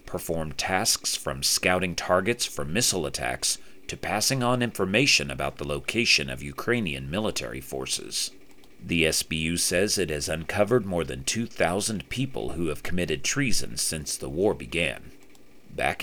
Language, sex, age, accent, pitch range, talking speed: English, male, 40-59, American, 75-105 Hz, 140 wpm